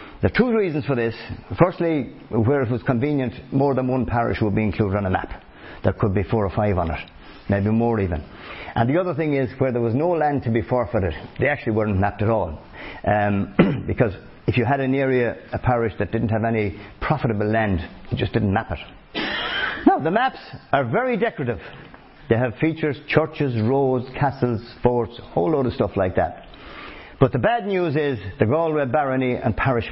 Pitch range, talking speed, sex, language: 105-145 Hz, 205 wpm, male, English